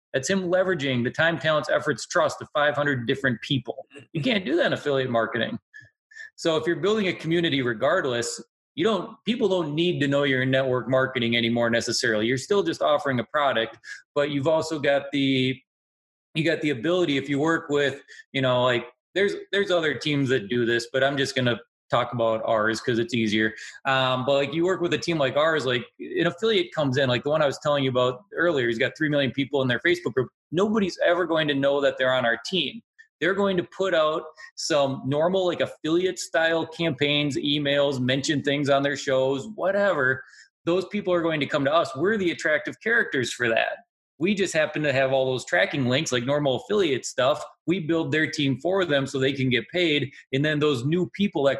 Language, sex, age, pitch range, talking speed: English, male, 30-49, 125-165 Hz, 215 wpm